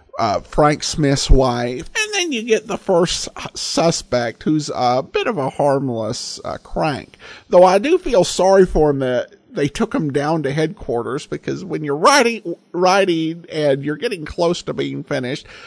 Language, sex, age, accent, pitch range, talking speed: English, male, 50-69, American, 125-180 Hz, 170 wpm